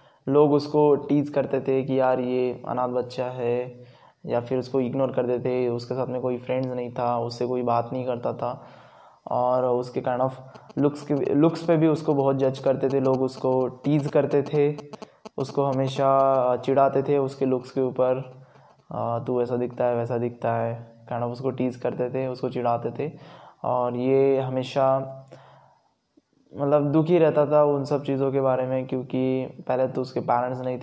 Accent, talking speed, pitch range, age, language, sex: native, 180 wpm, 125-140 Hz, 20-39, Hindi, male